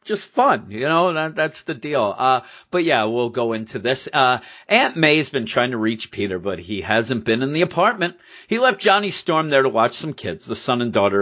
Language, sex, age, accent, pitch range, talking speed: English, male, 40-59, American, 105-145 Hz, 230 wpm